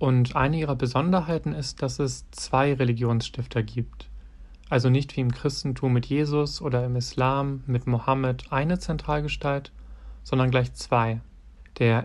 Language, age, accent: German, 40-59, German